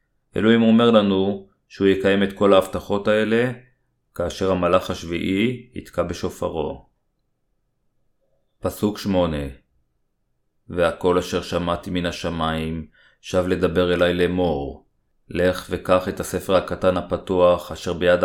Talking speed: 110 wpm